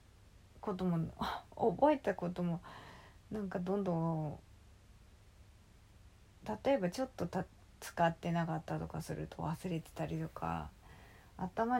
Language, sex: Japanese, female